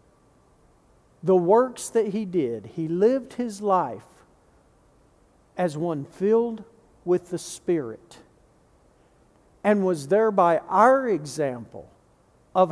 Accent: American